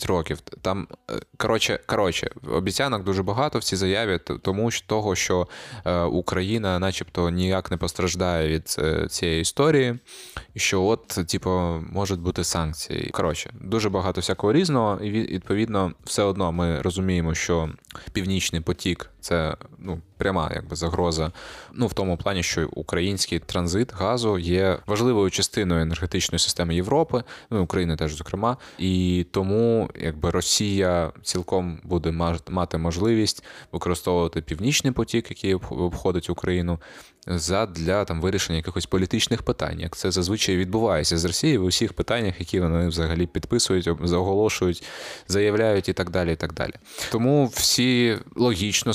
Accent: native